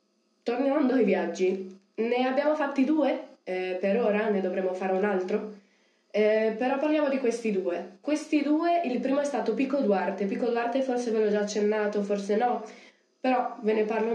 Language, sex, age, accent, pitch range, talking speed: Italian, female, 20-39, native, 185-230 Hz, 180 wpm